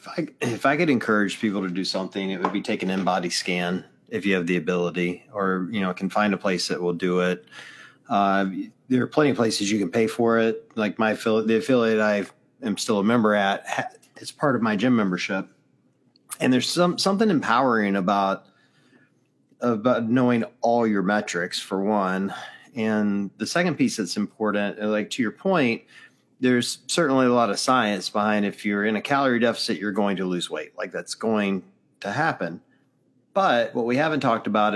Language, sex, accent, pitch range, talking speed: English, male, American, 100-120 Hz, 195 wpm